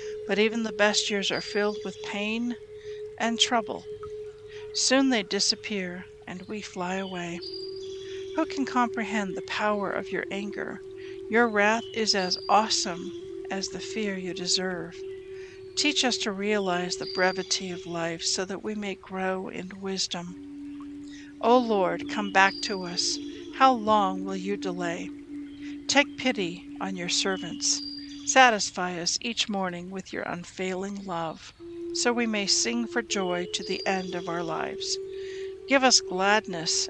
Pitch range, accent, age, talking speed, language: 190-290 Hz, American, 60-79, 145 wpm, English